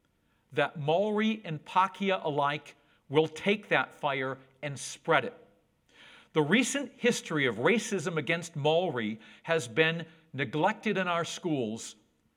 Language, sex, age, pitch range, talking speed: English, male, 50-69, 145-200 Hz, 120 wpm